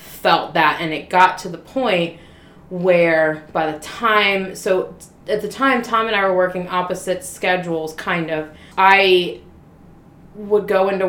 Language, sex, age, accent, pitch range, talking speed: English, female, 30-49, American, 175-220 Hz, 155 wpm